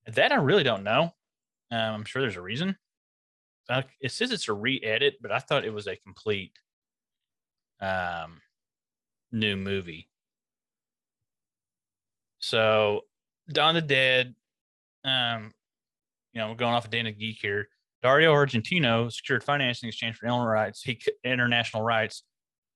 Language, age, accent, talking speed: English, 30-49, American, 135 wpm